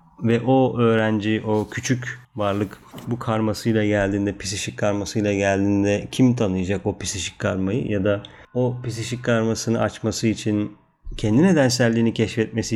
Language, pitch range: Turkish, 105-115 Hz